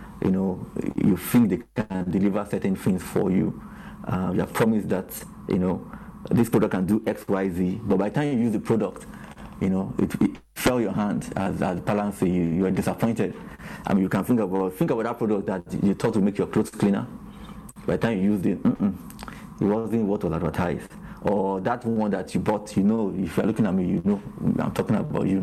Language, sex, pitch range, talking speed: English, male, 95-115 Hz, 220 wpm